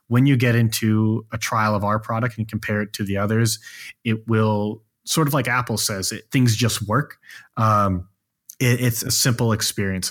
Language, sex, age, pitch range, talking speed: English, male, 30-49, 105-125 Hz, 190 wpm